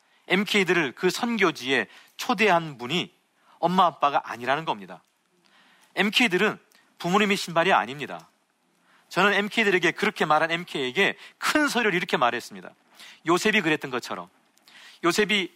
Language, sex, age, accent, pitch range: Korean, male, 40-59, native, 170-215 Hz